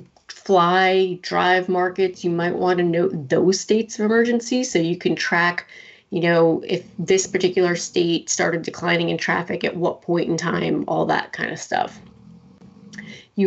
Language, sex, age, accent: English, female, 30-49, American